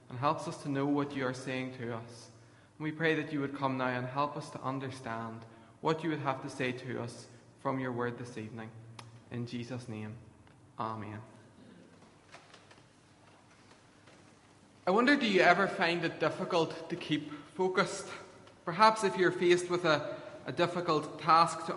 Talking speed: 175 wpm